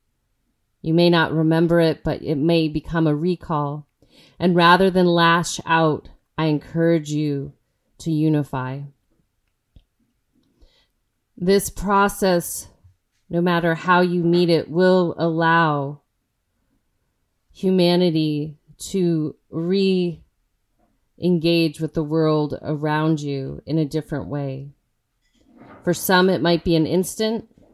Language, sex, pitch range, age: English, female, 145-175 Hz, 30-49